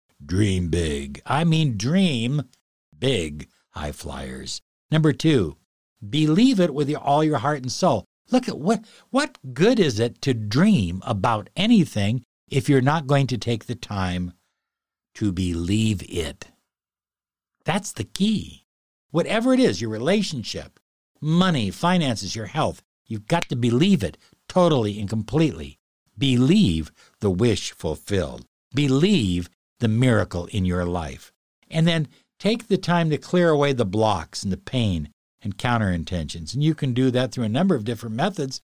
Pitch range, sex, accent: 95-155 Hz, male, American